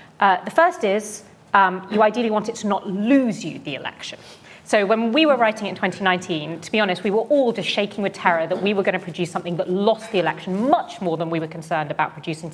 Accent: British